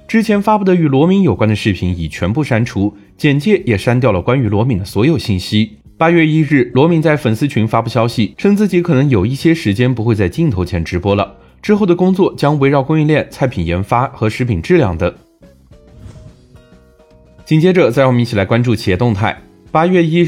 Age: 20-39